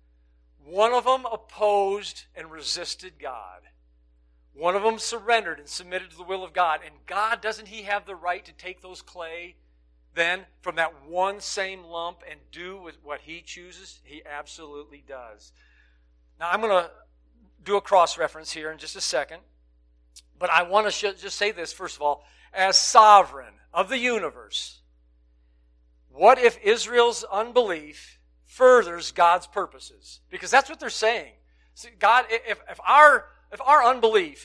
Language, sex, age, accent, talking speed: English, male, 50-69, American, 160 wpm